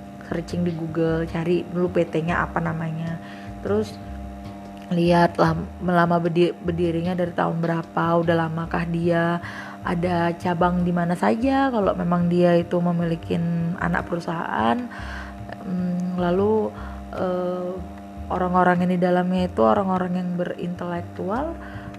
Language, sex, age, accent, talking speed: Indonesian, female, 30-49, native, 105 wpm